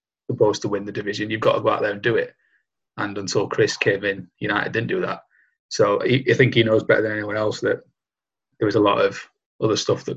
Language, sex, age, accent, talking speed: English, male, 20-39, British, 250 wpm